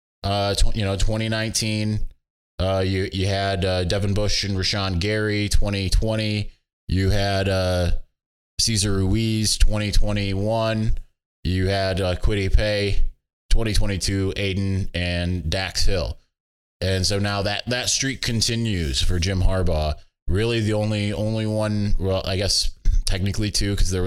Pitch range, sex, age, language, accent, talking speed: 85-105 Hz, male, 20-39, English, American, 130 wpm